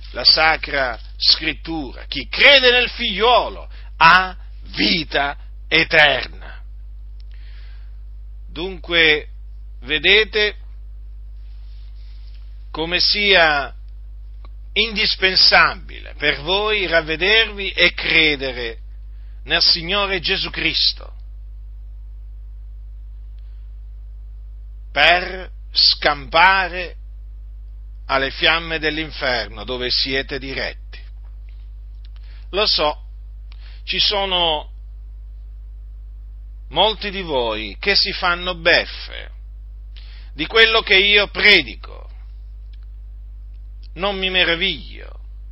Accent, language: native, Italian